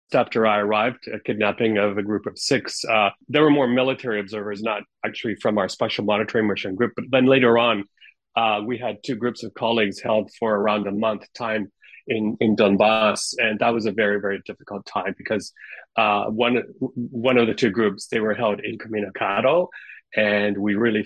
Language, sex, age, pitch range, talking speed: English, male, 30-49, 105-120 Hz, 195 wpm